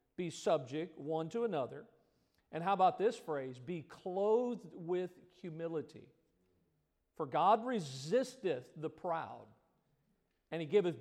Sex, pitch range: male, 155-215 Hz